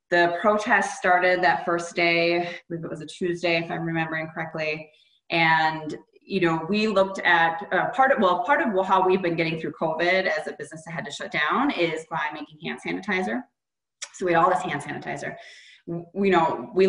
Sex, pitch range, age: female, 160-200 Hz, 20-39